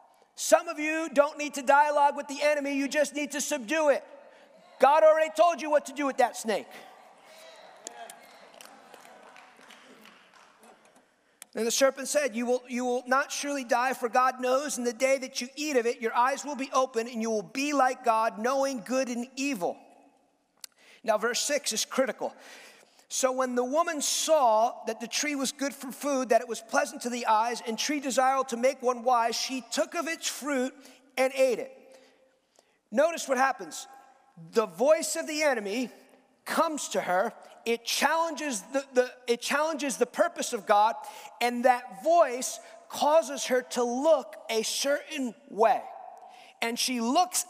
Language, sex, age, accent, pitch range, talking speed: English, male, 40-59, American, 245-295 Hz, 165 wpm